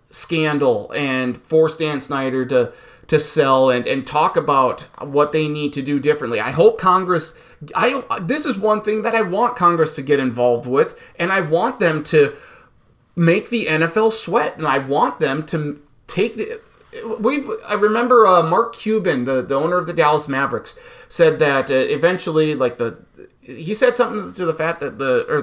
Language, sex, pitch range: English, male, 145-220 Hz